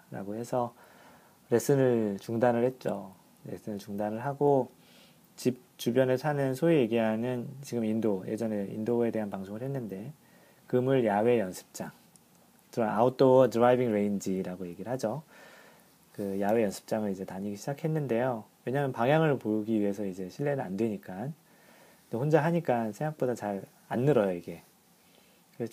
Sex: male